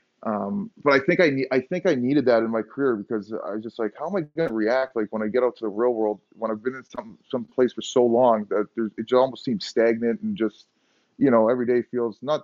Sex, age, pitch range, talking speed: male, 30-49, 105-125 Hz, 270 wpm